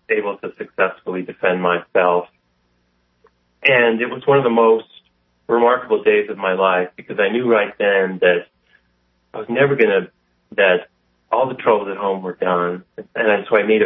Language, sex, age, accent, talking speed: English, male, 30-49, American, 170 wpm